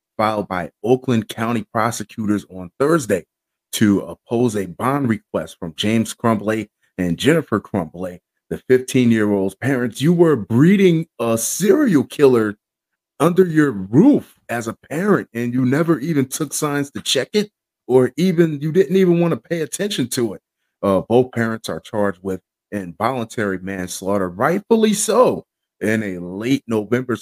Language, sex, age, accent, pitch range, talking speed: English, male, 30-49, American, 100-125 Hz, 150 wpm